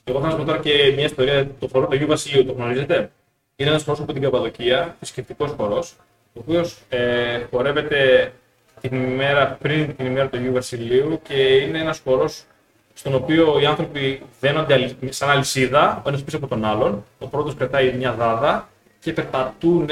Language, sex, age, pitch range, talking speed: Greek, male, 20-39, 130-160 Hz, 170 wpm